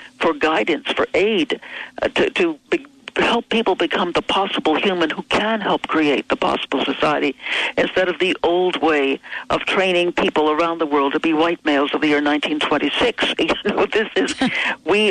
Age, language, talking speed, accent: 60-79, English, 180 wpm, American